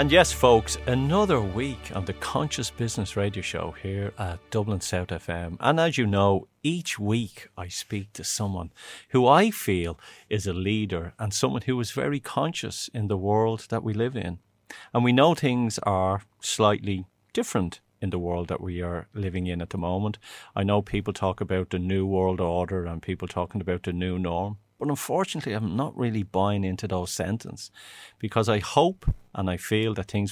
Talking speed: 190 wpm